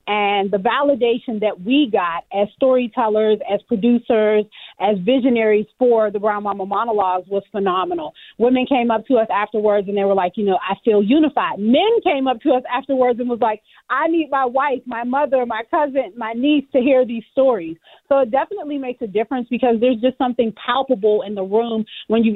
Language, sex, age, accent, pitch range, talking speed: English, female, 30-49, American, 215-270 Hz, 195 wpm